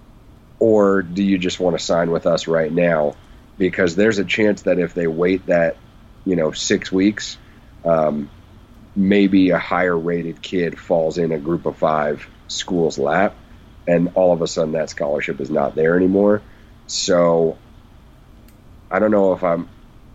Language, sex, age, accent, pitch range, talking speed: English, male, 30-49, American, 85-105 Hz, 160 wpm